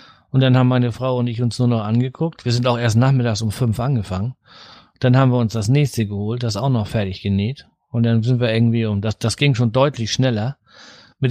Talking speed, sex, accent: 235 wpm, male, German